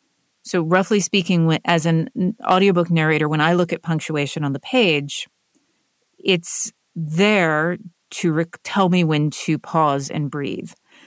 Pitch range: 160-205 Hz